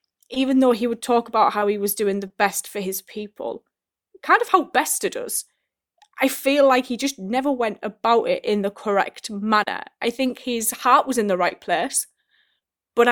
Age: 20-39